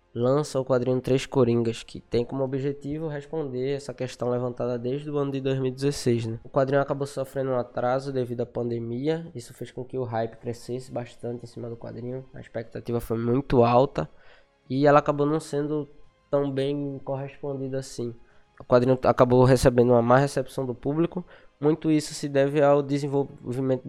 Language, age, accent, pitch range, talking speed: Portuguese, 20-39, Brazilian, 120-140 Hz, 175 wpm